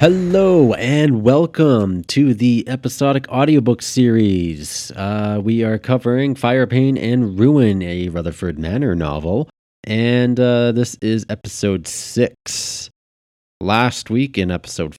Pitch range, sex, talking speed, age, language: 90-115 Hz, male, 120 wpm, 30-49, English